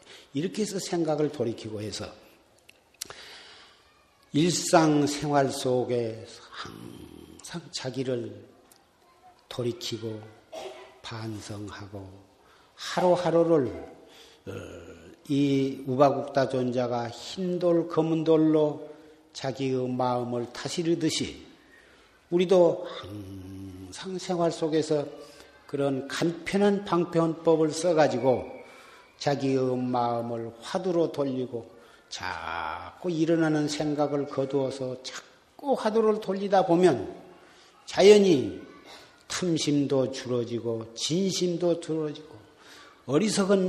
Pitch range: 125-170 Hz